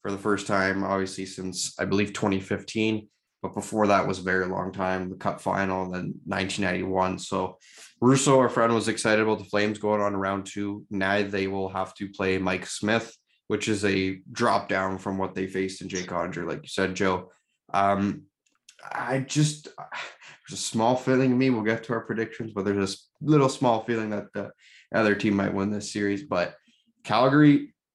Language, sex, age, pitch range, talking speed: English, male, 20-39, 95-115 Hz, 200 wpm